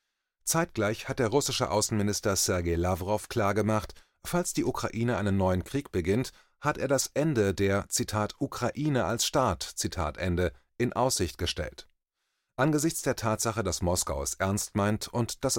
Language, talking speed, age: German, 150 wpm, 30-49